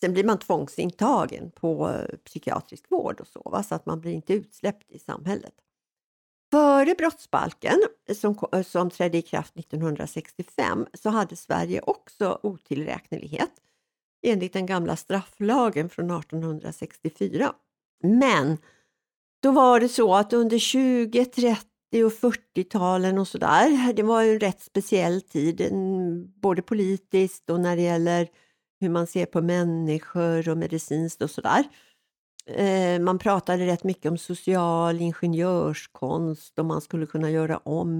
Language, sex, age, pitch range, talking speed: Swedish, female, 60-79, 165-215 Hz, 135 wpm